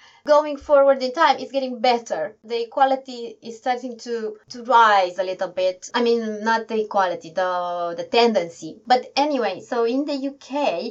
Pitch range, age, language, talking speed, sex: 210-265 Hz, 20-39, English, 170 wpm, female